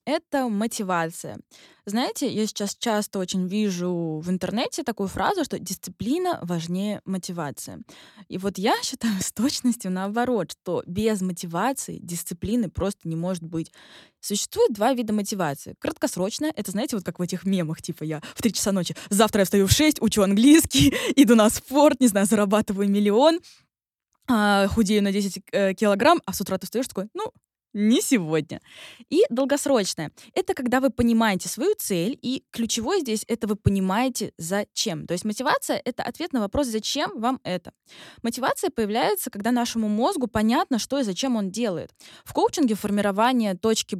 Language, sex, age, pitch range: Russian, female, 20-39, 195-250 Hz